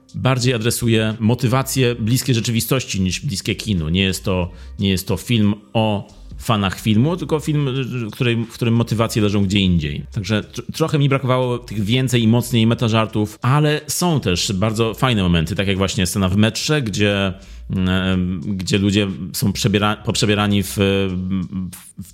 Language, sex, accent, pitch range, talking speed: Polish, male, native, 100-125 Hz, 145 wpm